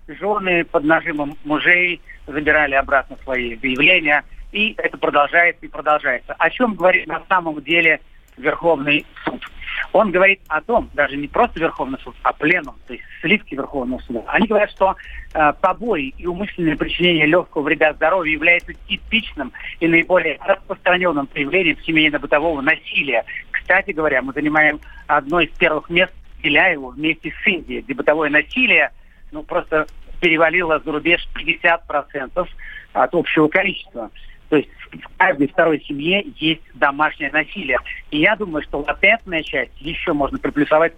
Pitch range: 150-185 Hz